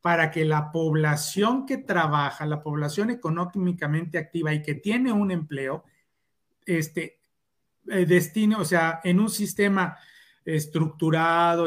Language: Spanish